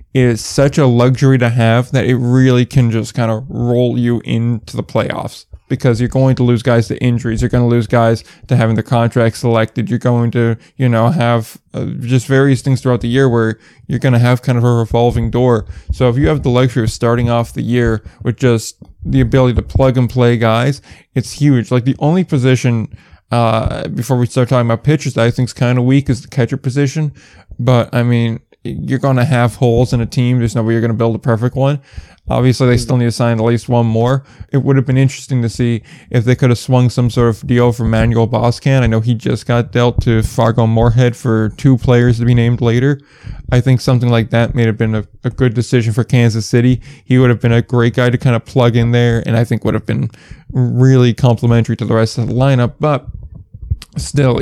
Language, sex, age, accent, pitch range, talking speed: English, male, 20-39, American, 115-130 Hz, 235 wpm